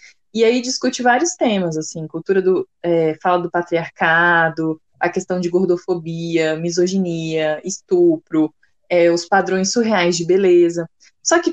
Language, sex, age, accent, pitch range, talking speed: Portuguese, female, 20-39, Brazilian, 170-220 Hz, 135 wpm